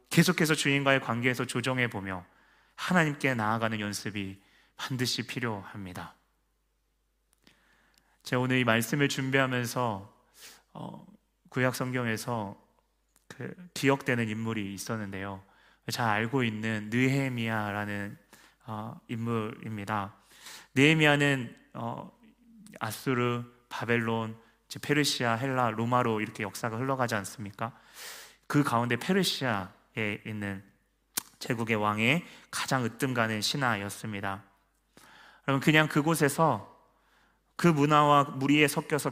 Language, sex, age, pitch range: Korean, male, 30-49, 110-145 Hz